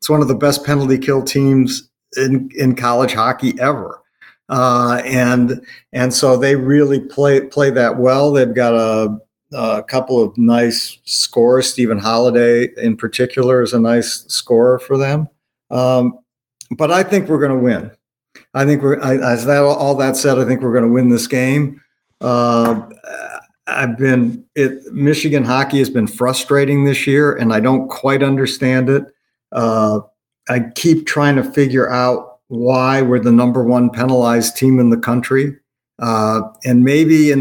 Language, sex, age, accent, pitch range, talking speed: English, male, 50-69, American, 120-140 Hz, 165 wpm